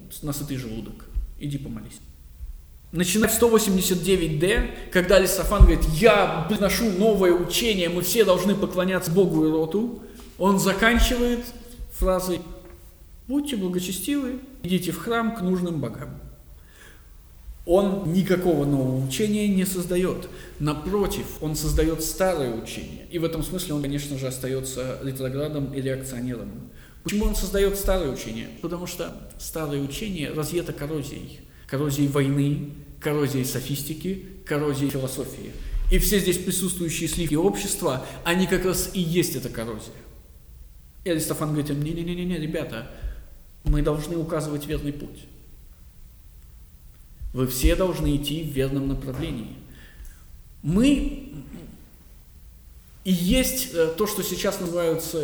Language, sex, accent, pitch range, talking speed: Russian, male, native, 135-185 Hz, 120 wpm